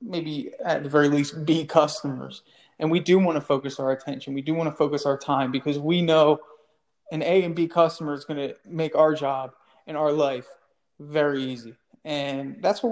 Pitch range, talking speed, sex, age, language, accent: 140-160 Hz, 205 wpm, male, 20-39, English, American